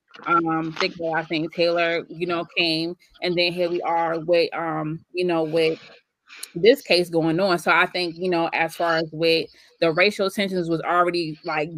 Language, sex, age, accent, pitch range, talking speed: English, female, 20-39, American, 165-190 Hz, 190 wpm